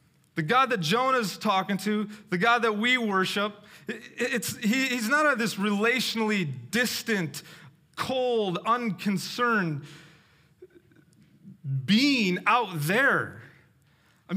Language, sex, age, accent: English, male, 30-49, American